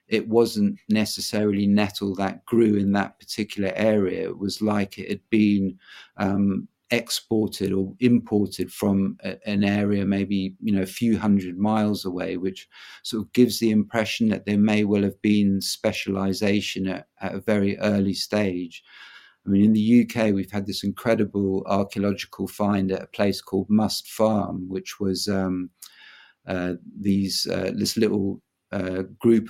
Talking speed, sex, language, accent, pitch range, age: 160 wpm, male, English, British, 95-105 Hz, 50-69